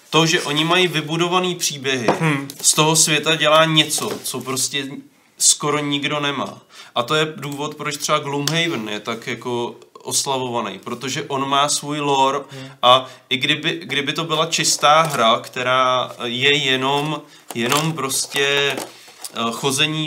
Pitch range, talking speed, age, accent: 125-145 Hz, 140 wpm, 20-39, native